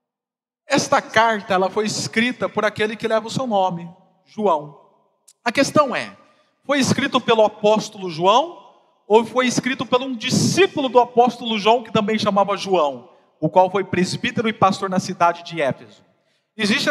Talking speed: 160 wpm